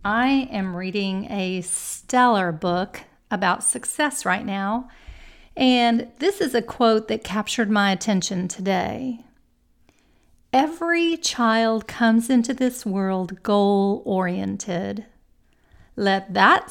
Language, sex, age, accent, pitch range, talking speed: English, female, 40-59, American, 195-245 Hz, 105 wpm